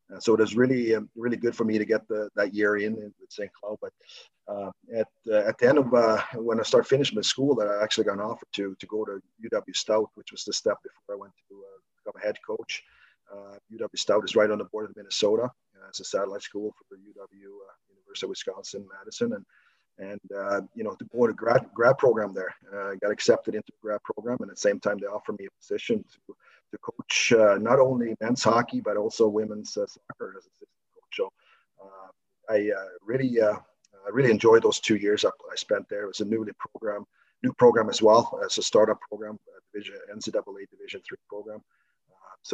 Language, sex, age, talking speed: English, male, 40-59, 235 wpm